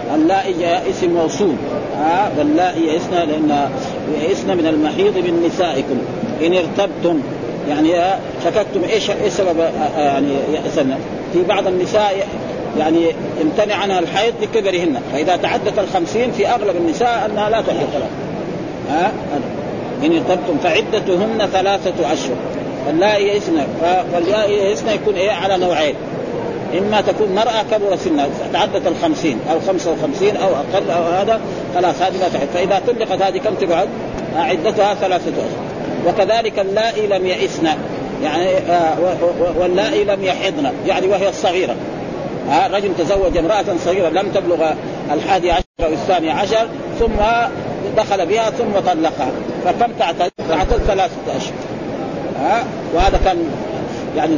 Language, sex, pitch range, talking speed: Arabic, male, 175-210 Hz, 135 wpm